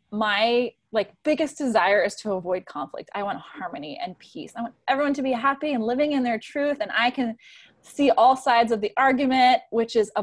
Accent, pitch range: American, 195-260 Hz